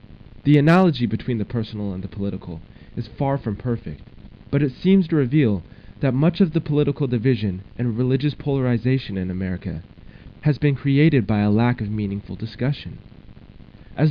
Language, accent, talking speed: English, American, 160 wpm